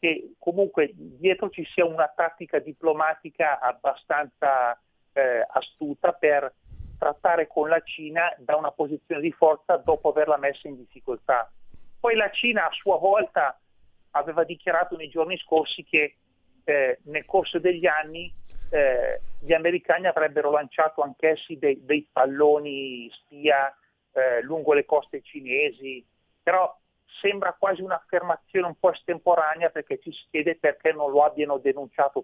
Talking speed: 140 wpm